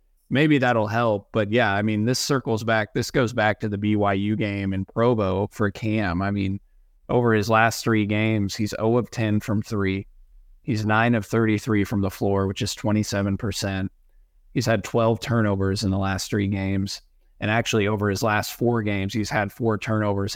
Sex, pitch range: male, 100-115 Hz